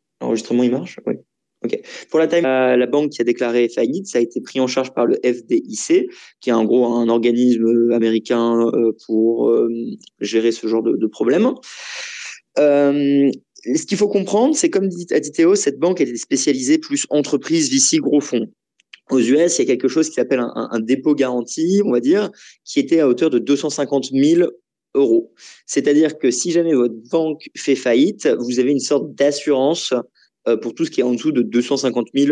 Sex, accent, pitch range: male, French, 120-165 Hz